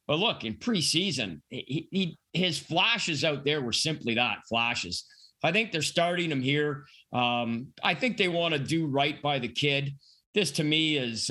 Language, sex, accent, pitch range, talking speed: English, male, American, 130-160 Hz, 185 wpm